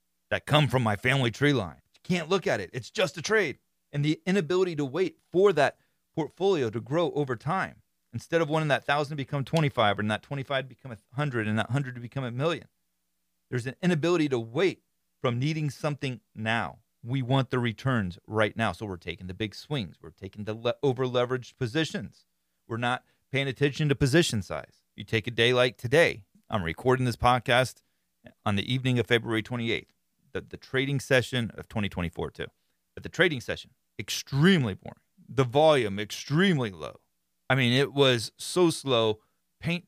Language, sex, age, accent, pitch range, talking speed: English, male, 30-49, American, 110-150 Hz, 185 wpm